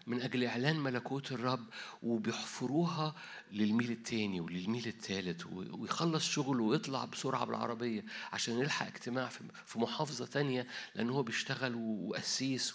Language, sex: Arabic, male